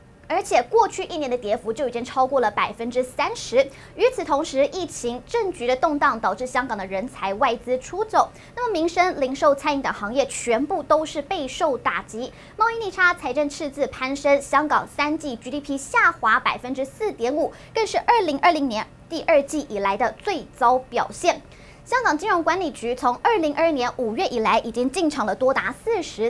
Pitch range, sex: 250-340 Hz, male